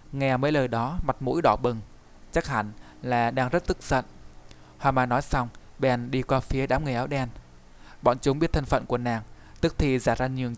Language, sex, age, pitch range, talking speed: Vietnamese, male, 20-39, 110-135 Hz, 220 wpm